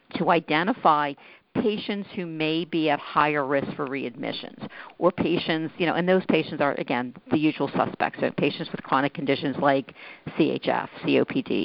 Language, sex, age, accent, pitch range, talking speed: English, female, 50-69, American, 145-185 Hz, 160 wpm